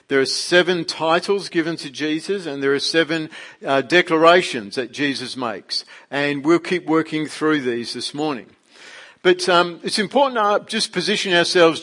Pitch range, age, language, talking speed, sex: 140-180 Hz, 50-69, English, 160 wpm, male